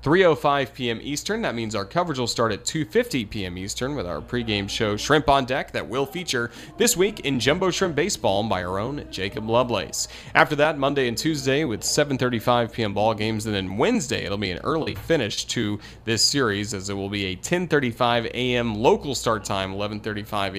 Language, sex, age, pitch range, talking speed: English, male, 30-49, 105-135 Hz, 190 wpm